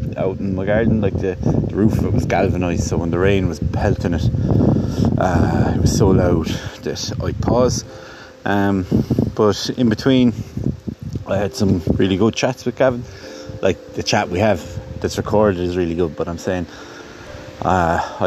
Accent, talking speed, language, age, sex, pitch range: Irish, 170 wpm, English, 30-49, male, 95-115 Hz